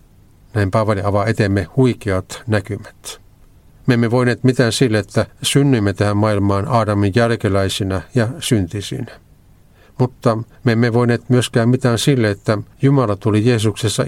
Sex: male